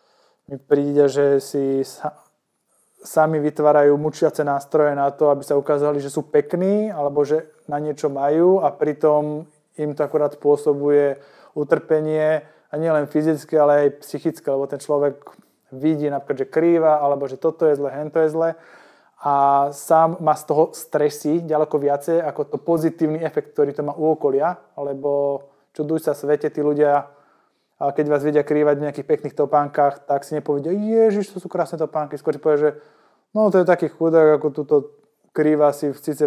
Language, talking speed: Slovak, 170 wpm